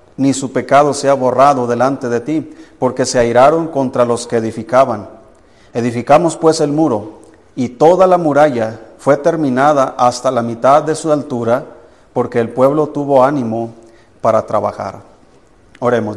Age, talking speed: 40-59, 145 wpm